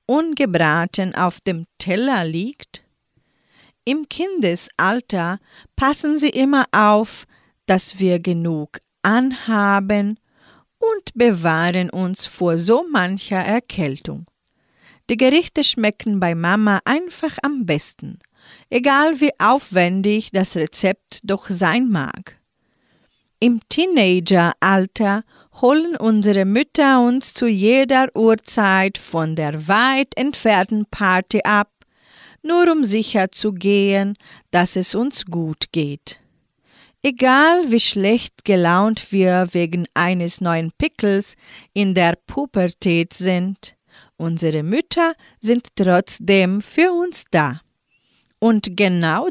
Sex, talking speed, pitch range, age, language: female, 105 wpm, 185-260 Hz, 40-59, German